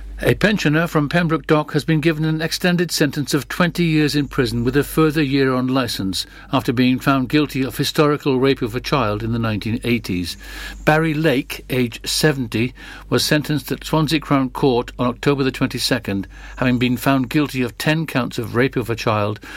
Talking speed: 185 wpm